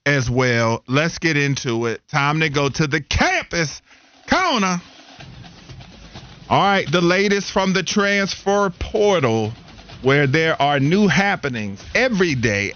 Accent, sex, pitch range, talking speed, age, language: American, male, 120-155 Hz, 130 wpm, 40-59, English